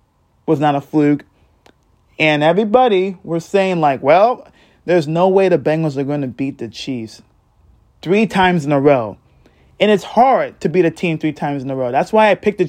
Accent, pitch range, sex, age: American, 115-170 Hz, male, 20-39